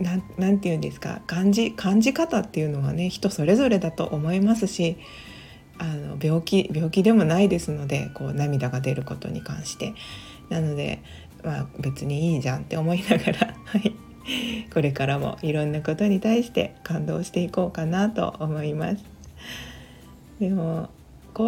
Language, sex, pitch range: Japanese, female, 155-205 Hz